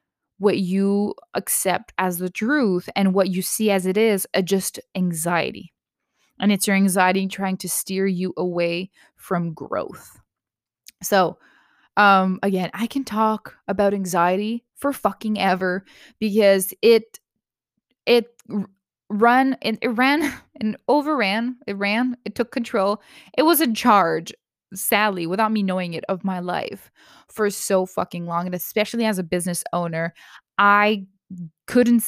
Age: 20-39